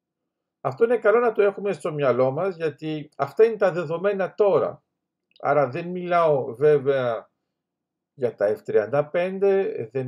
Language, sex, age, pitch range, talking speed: Greek, male, 50-69, 145-205 Hz, 135 wpm